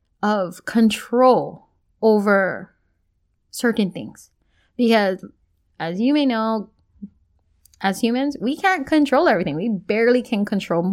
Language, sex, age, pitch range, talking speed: English, female, 20-39, 185-245 Hz, 110 wpm